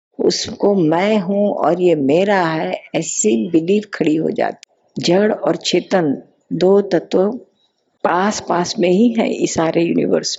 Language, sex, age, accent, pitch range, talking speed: Hindi, female, 50-69, native, 160-200 Hz, 145 wpm